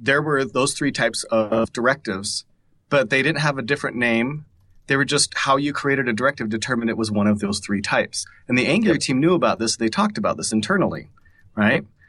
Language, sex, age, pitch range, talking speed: English, male, 30-49, 105-135 Hz, 215 wpm